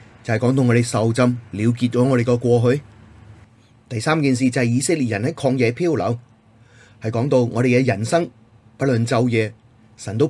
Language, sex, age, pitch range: Chinese, male, 30-49, 110-130 Hz